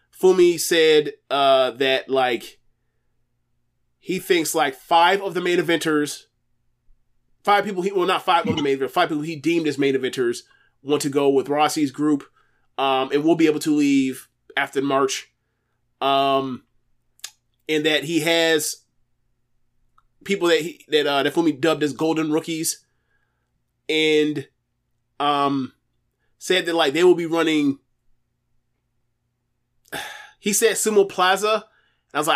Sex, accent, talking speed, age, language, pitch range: male, American, 140 wpm, 20-39, English, 130-180 Hz